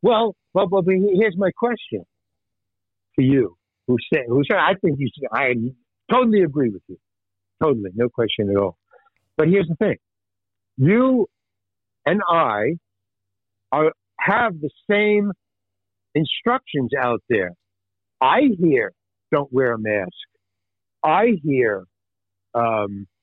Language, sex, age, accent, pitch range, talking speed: English, male, 60-79, American, 100-165 Hz, 125 wpm